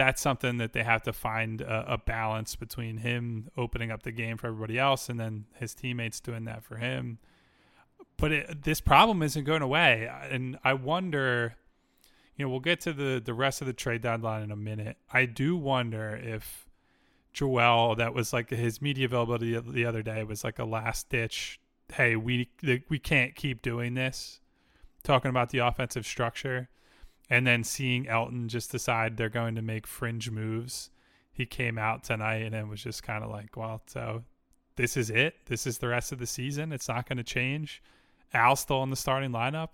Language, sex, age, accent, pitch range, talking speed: English, male, 20-39, American, 115-135 Hz, 195 wpm